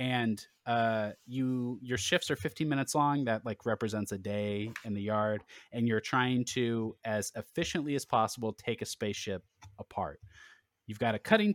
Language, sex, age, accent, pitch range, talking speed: English, male, 30-49, American, 105-125 Hz, 170 wpm